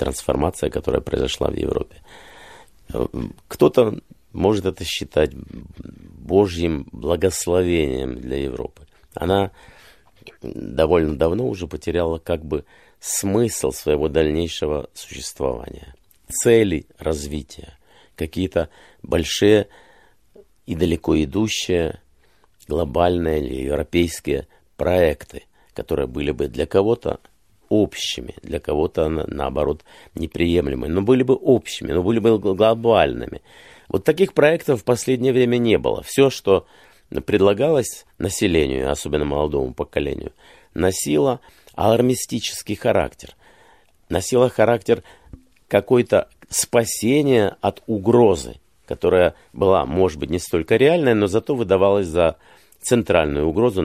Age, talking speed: 50-69, 100 wpm